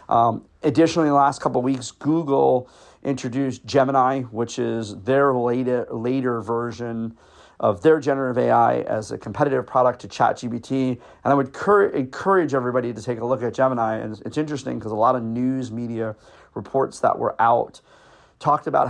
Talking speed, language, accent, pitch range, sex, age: 170 wpm, English, American, 115-140 Hz, male, 40-59